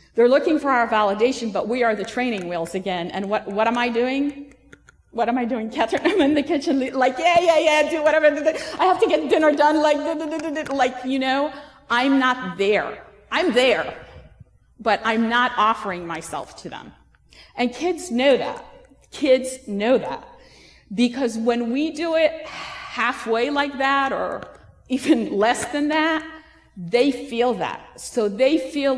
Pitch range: 210-275 Hz